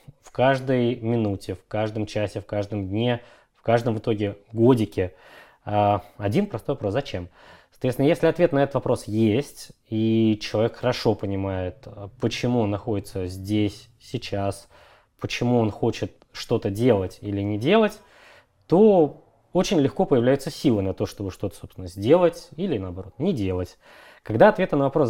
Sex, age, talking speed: male, 20-39, 145 wpm